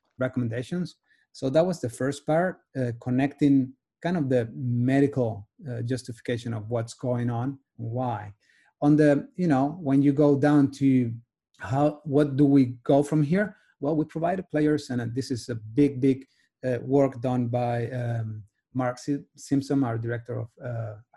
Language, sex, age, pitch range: English, male, 30-49, 120-140 Hz